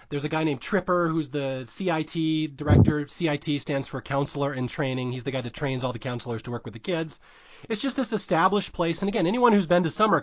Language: English